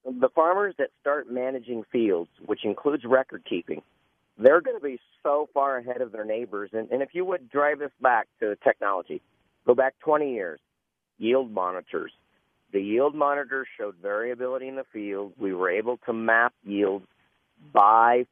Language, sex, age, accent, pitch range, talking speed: English, male, 50-69, American, 115-140 Hz, 165 wpm